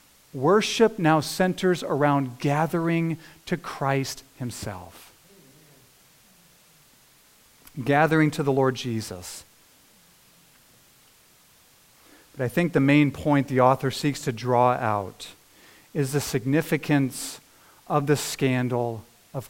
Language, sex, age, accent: English, male, 40-59, American